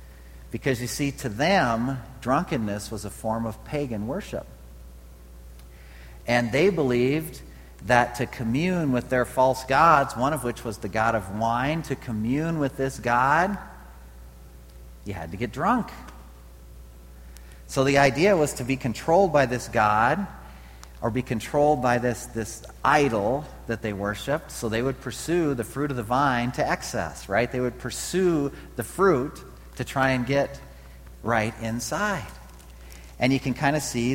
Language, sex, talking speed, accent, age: English, male, 155 wpm, American, 40-59